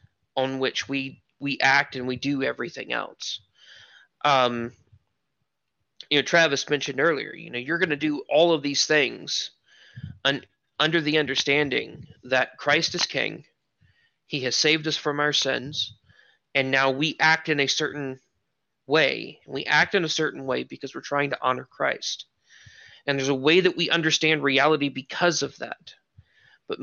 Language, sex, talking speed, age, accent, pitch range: English, male, 165 wpm, 30-49, American, 130-155 Hz